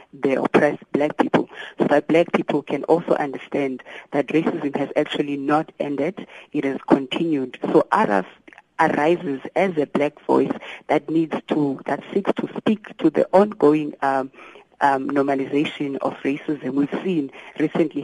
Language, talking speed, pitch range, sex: English, 150 wpm, 140-175 Hz, female